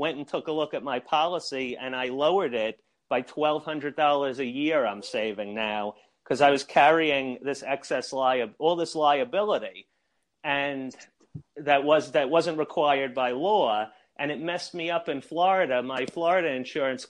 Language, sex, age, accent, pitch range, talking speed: English, male, 40-59, American, 130-155 Hz, 170 wpm